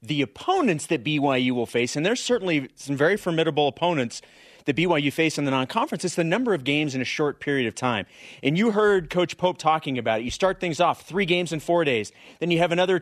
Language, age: English, 30-49